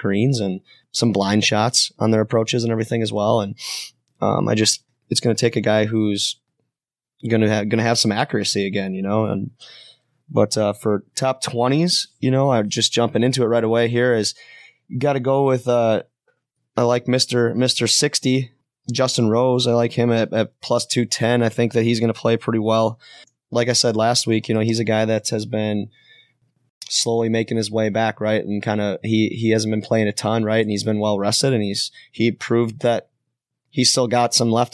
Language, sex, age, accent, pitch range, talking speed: English, male, 20-39, American, 110-130 Hz, 215 wpm